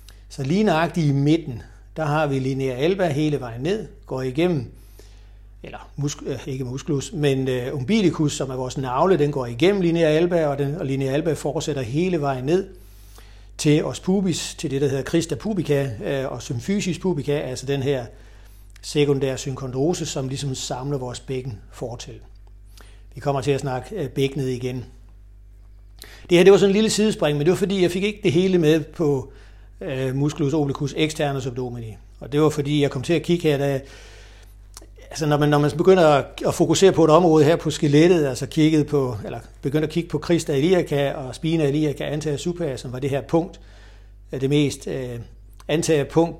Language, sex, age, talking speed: Danish, male, 60-79, 180 wpm